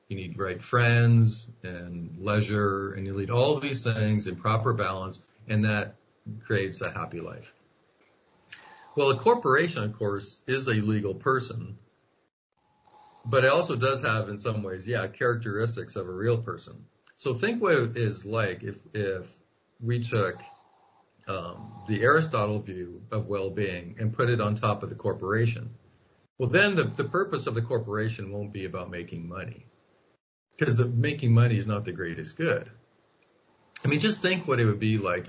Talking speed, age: 170 wpm, 50-69